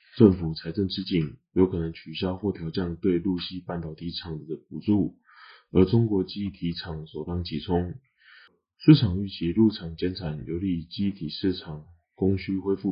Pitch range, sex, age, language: 85-95 Hz, male, 20-39, Chinese